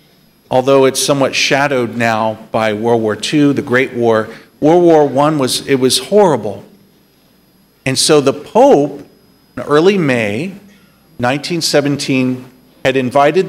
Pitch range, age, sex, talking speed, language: 125-180 Hz, 50-69, male, 125 wpm, English